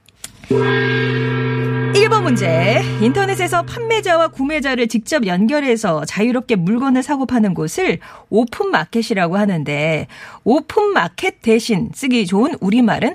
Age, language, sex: 40-59, Korean, female